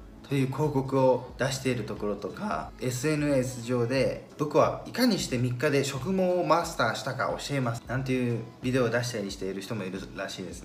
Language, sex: Japanese, male